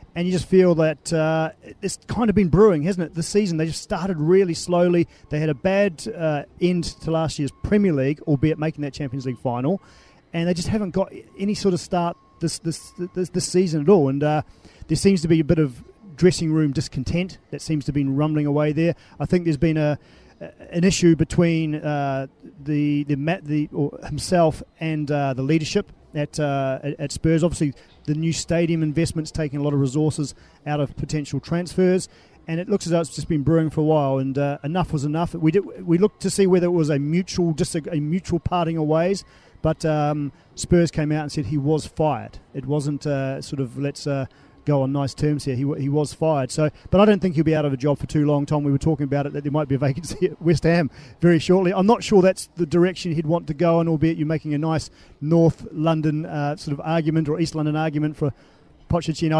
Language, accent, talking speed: English, Australian, 235 wpm